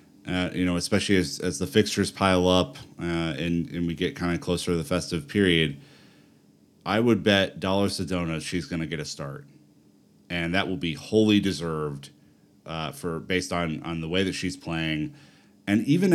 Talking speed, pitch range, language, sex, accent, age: 190 wpm, 80-95 Hz, English, male, American, 30-49